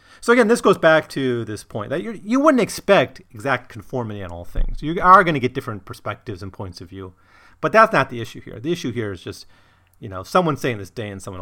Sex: male